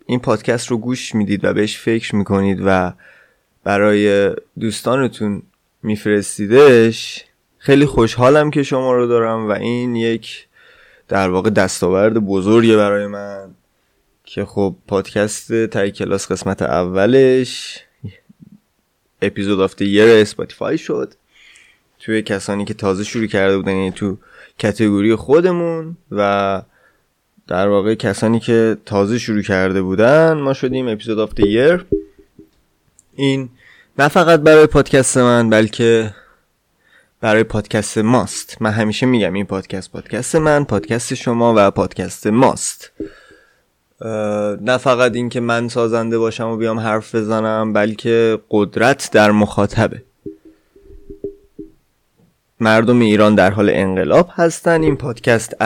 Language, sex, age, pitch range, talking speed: Persian, male, 20-39, 100-125 Hz, 115 wpm